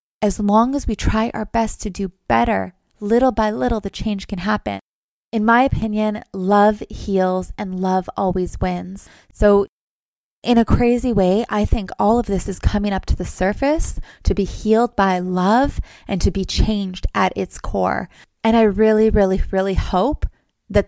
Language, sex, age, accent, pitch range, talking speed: English, female, 20-39, American, 185-220 Hz, 175 wpm